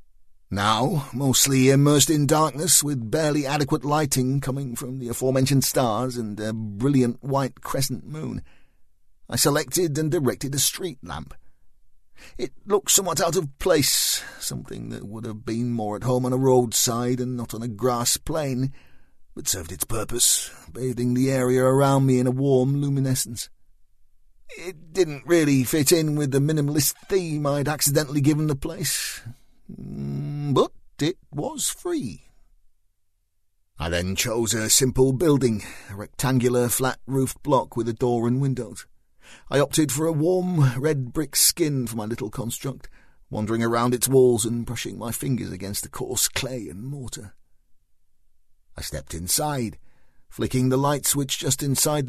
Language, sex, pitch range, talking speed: English, male, 110-145 Hz, 150 wpm